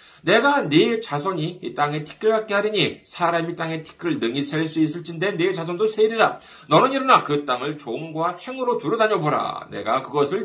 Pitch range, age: 145-230 Hz, 40-59